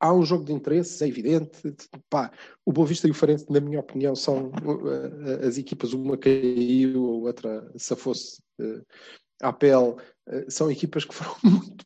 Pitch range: 125-180 Hz